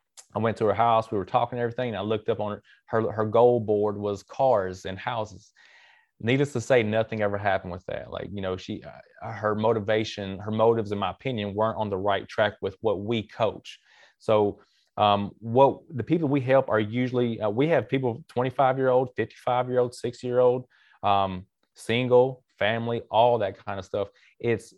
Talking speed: 210 wpm